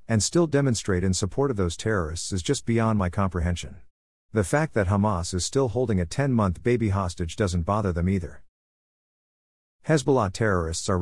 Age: 50-69